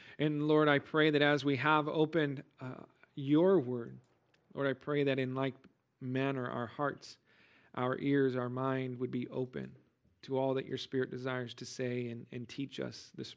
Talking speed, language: 185 wpm, English